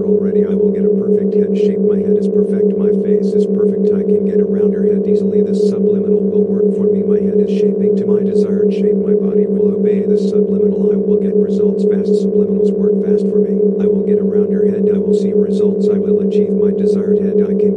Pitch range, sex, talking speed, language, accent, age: 205-210 Hz, male, 240 wpm, English, American, 50-69